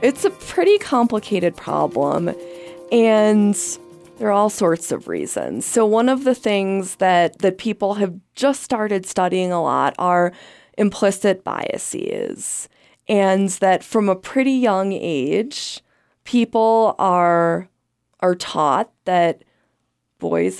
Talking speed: 120 wpm